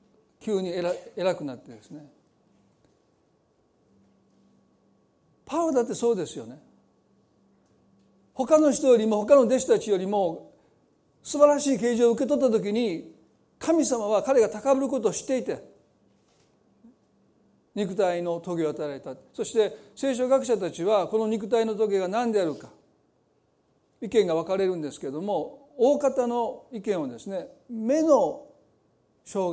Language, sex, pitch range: Japanese, male, 200-265 Hz